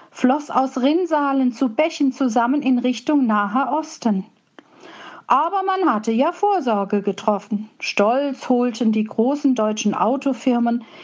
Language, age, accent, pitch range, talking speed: German, 50-69, German, 215-280 Hz, 120 wpm